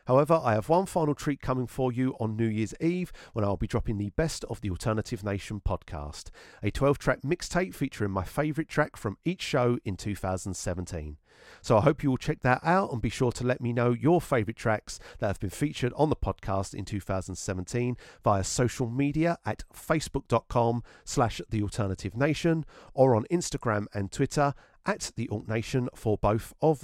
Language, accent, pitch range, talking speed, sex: English, British, 105-145 Hz, 180 wpm, male